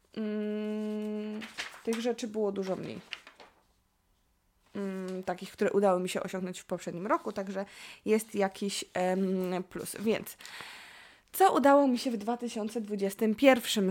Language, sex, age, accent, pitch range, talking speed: Polish, female, 20-39, native, 190-225 Hz, 110 wpm